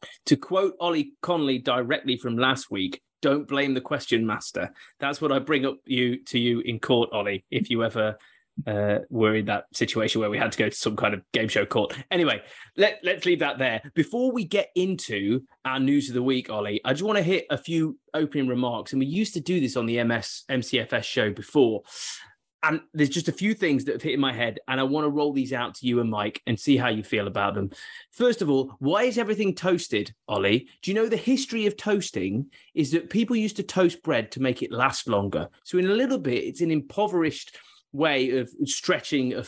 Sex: male